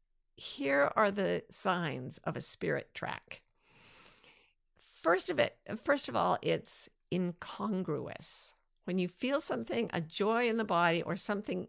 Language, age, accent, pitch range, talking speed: English, 50-69, American, 165-210 Hz, 140 wpm